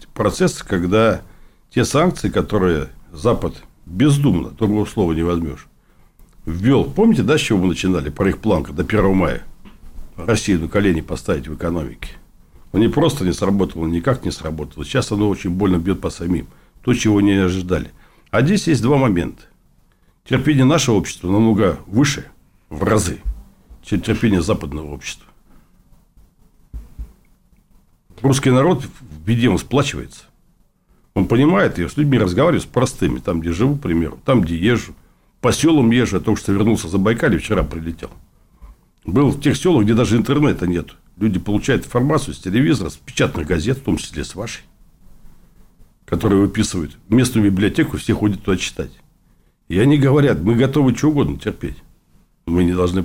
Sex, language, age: male, Russian, 60-79